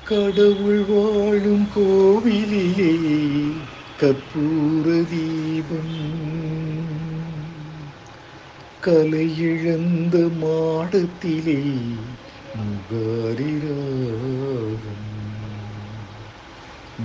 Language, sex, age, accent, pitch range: Tamil, male, 60-79, native, 120-160 Hz